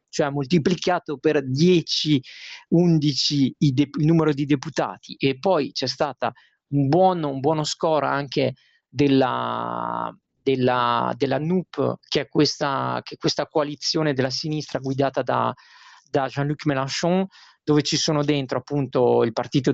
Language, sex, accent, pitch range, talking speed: Italian, male, native, 135-165 Hz, 135 wpm